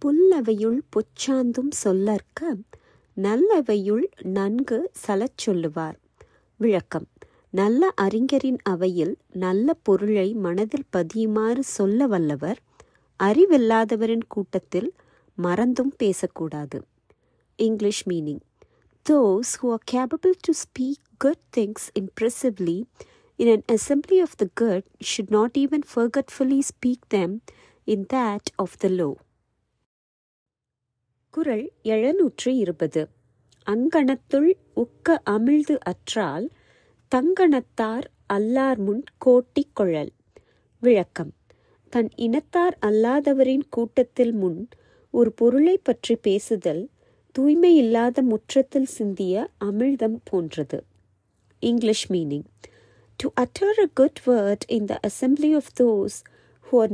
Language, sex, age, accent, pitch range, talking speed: Tamil, female, 30-49, native, 195-270 Hz, 95 wpm